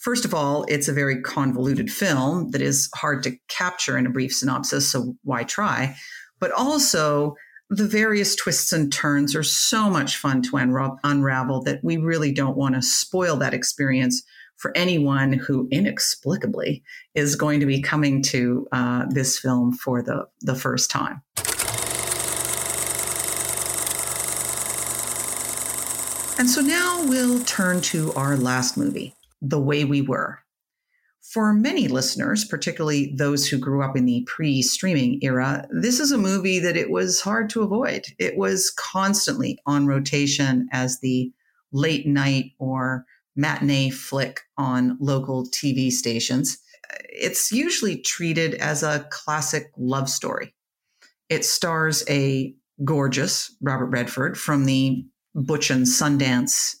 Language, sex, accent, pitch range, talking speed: English, female, American, 130-175 Hz, 140 wpm